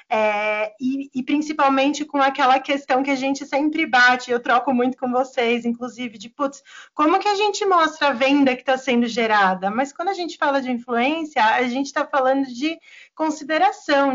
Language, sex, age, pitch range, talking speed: Portuguese, female, 20-39, 240-295 Hz, 185 wpm